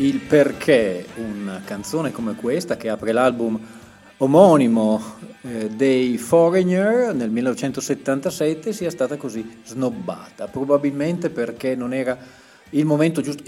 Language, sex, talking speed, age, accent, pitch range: Italian, male, 115 wpm, 40-59, native, 110-155 Hz